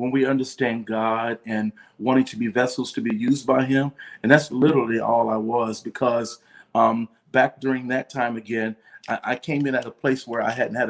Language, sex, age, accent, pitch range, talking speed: English, male, 40-59, American, 120-140 Hz, 210 wpm